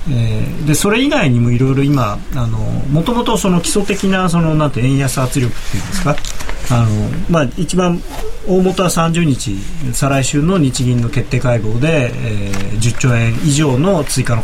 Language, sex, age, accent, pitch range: Japanese, male, 40-59, native, 120-170 Hz